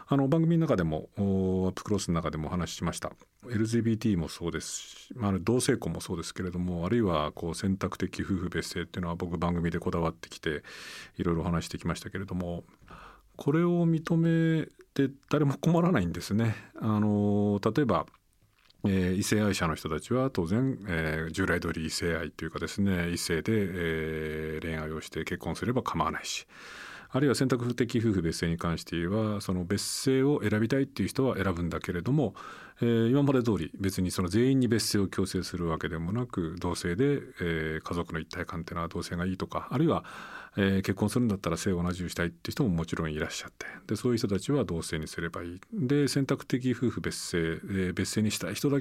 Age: 40-59